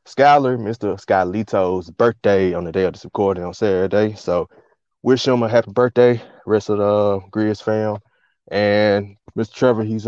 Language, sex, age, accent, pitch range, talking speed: English, male, 20-39, American, 95-115 Hz, 160 wpm